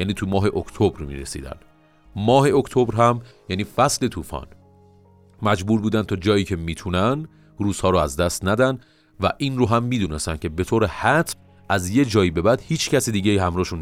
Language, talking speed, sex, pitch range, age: Persian, 175 wpm, male, 85-115 Hz, 40-59